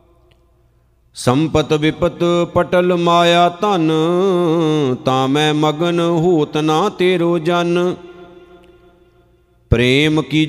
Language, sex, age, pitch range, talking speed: Punjabi, male, 50-69, 155-180 Hz, 80 wpm